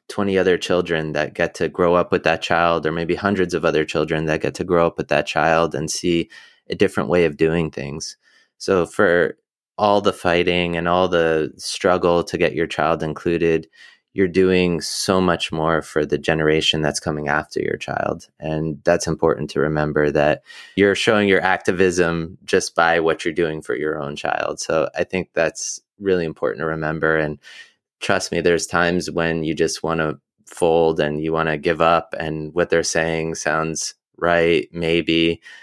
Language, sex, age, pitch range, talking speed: English, male, 20-39, 80-85 Hz, 185 wpm